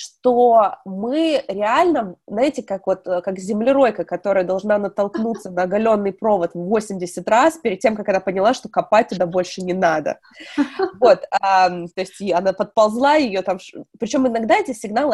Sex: female